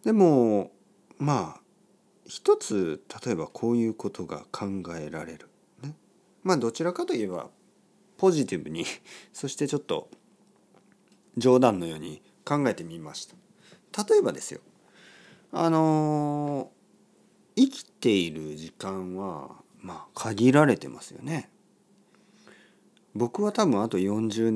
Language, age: Japanese, 40-59